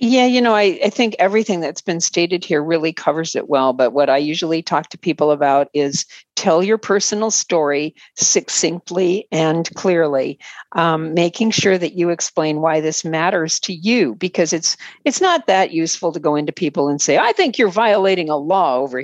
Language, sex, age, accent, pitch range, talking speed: English, female, 50-69, American, 155-195 Hz, 190 wpm